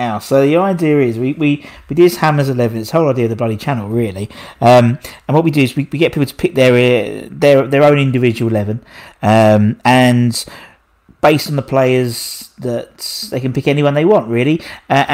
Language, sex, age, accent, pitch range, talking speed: English, male, 40-59, British, 120-145 Hz, 200 wpm